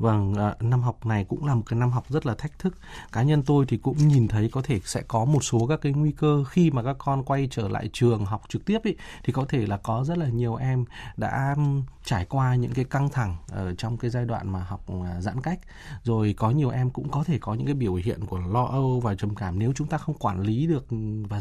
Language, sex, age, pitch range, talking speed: Vietnamese, male, 20-39, 115-150 Hz, 265 wpm